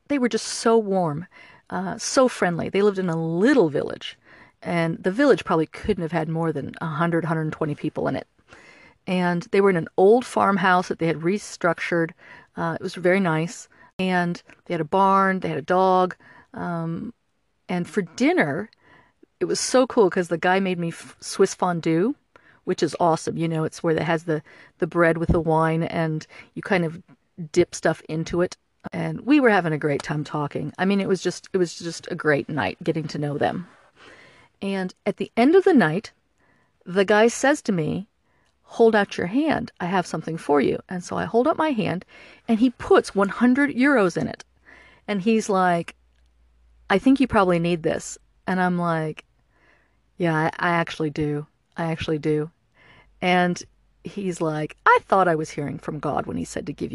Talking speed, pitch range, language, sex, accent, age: 195 wpm, 160-200 Hz, English, female, American, 40-59